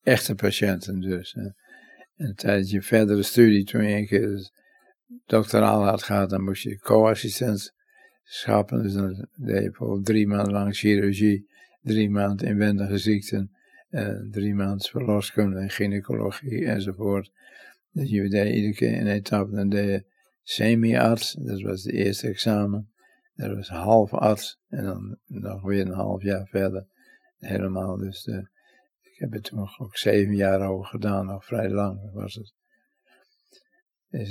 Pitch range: 100-115 Hz